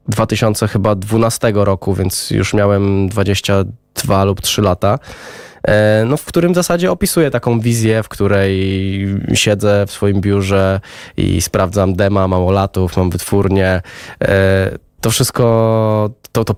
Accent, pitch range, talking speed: native, 100-120 Hz, 130 wpm